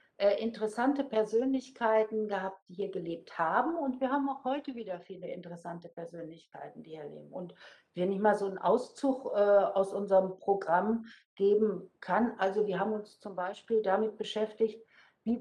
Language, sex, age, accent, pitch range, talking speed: German, female, 60-79, German, 190-225 Hz, 155 wpm